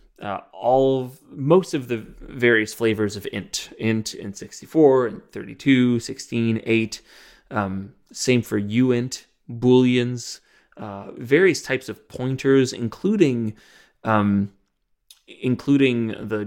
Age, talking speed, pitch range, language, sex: 20-39, 115 wpm, 105-125 Hz, English, male